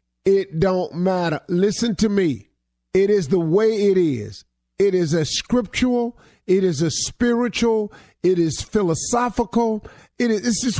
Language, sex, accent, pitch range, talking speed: English, male, American, 140-205 Hz, 150 wpm